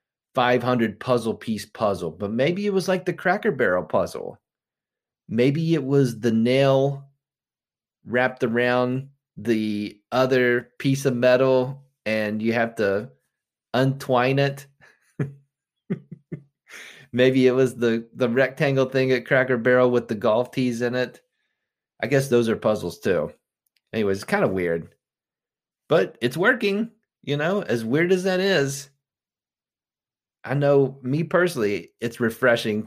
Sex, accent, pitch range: male, American, 110-140 Hz